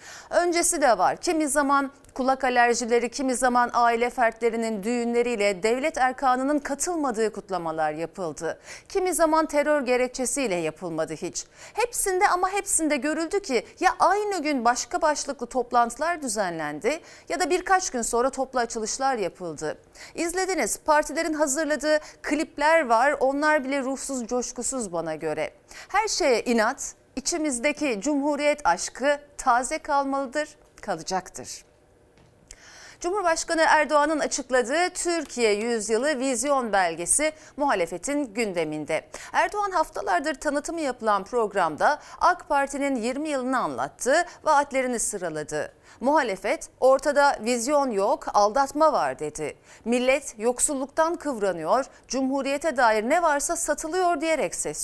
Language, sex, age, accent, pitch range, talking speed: Turkish, female, 40-59, native, 225-310 Hz, 110 wpm